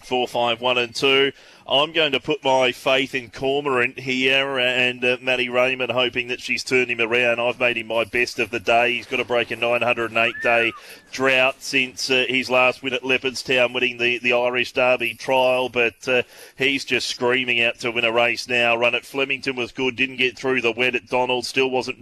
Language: English